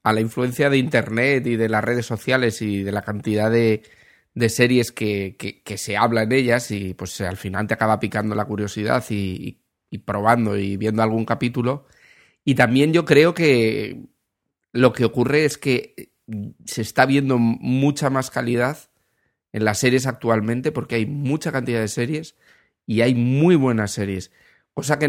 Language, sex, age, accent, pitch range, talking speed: English, male, 30-49, Spanish, 110-130 Hz, 170 wpm